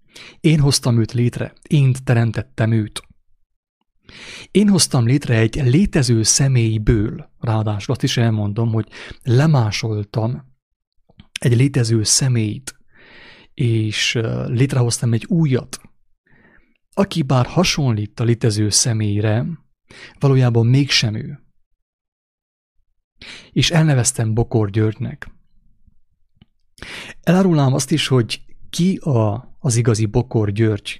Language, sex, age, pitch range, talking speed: English, male, 30-49, 110-135 Hz, 95 wpm